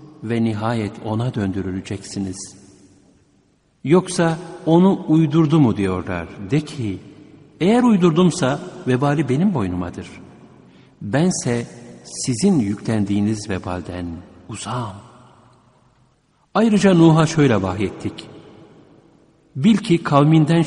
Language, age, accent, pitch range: Turkish, 60-79, native, 105-150 Hz